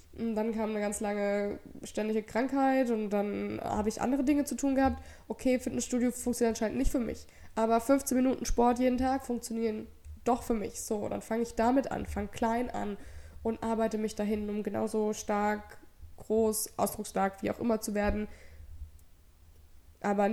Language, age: English, 20-39